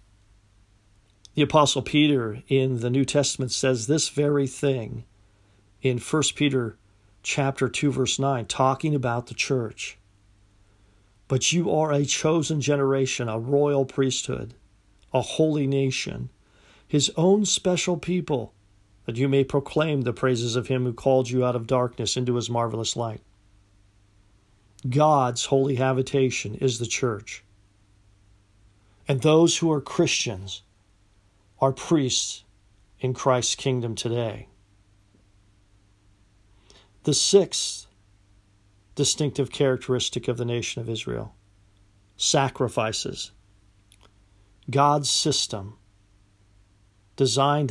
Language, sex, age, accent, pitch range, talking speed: English, male, 50-69, American, 100-135 Hz, 110 wpm